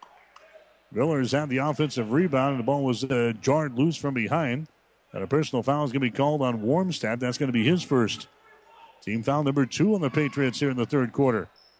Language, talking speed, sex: English, 220 wpm, male